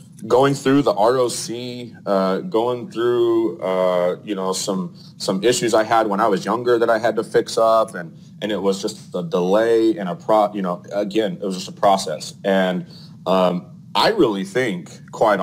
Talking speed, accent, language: 190 wpm, American, English